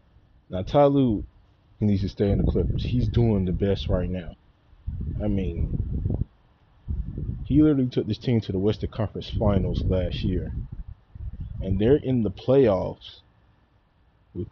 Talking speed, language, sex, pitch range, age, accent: 140 wpm, English, male, 95-115 Hz, 20-39, American